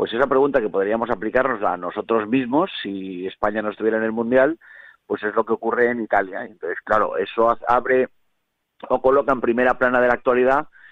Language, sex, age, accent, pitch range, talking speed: Spanish, male, 40-59, Spanish, 115-145 Hz, 190 wpm